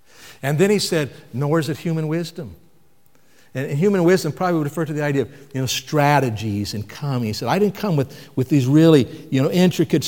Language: English